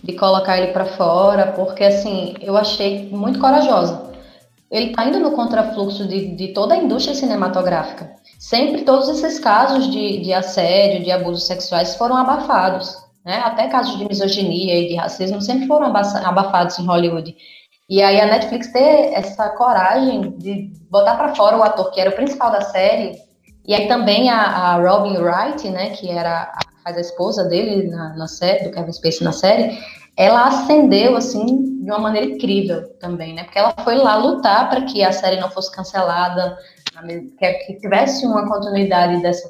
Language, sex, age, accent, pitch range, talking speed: Portuguese, female, 20-39, Brazilian, 180-230 Hz, 175 wpm